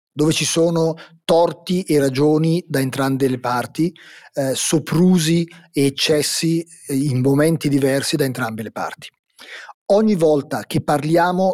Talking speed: 130 wpm